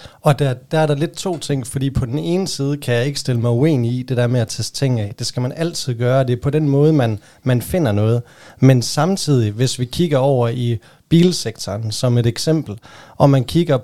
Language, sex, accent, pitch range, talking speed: Danish, male, native, 120-160 Hz, 240 wpm